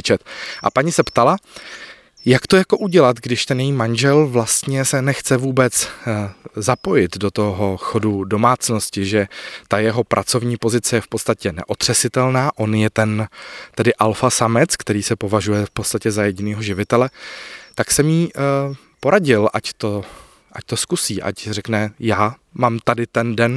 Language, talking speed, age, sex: Czech, 155 wpm, 20-39, male